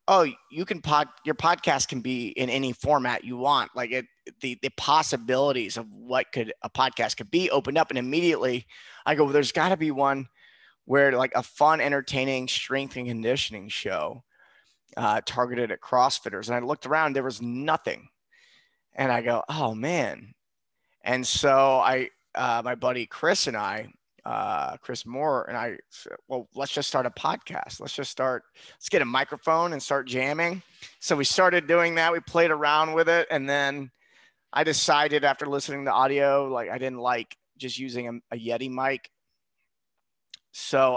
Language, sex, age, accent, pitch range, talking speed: English, male, 30-49, American, 125-150 Hz, 175 wpm